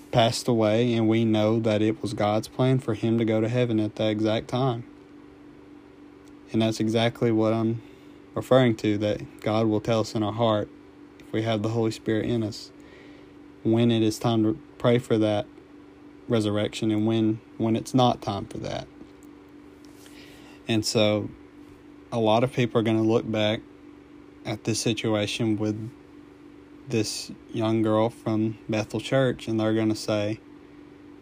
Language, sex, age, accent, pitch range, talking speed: English, male, 20-39, American, 110-120 Hz, 165 wpm